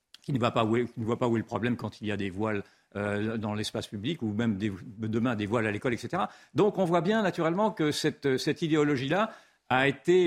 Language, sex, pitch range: French, male, 120-155 Hz